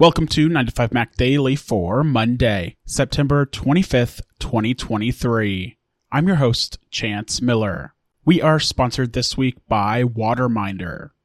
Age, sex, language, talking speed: 30-49, male, English, 140 wpm